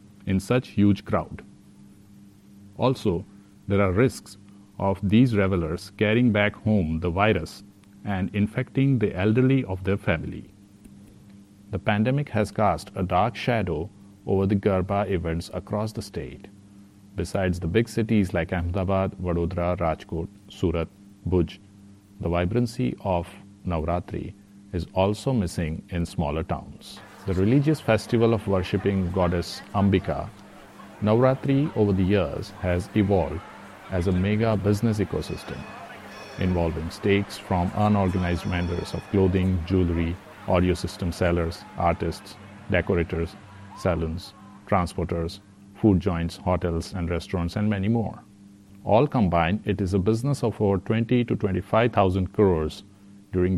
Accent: Indian